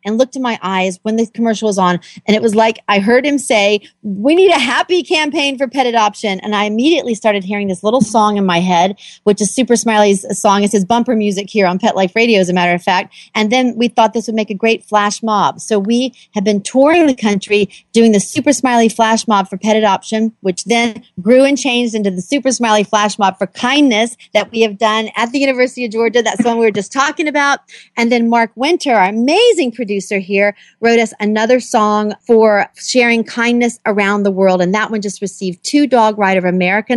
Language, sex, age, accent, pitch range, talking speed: English, female, 40-59, American, 200-245 Hz, 230 wpm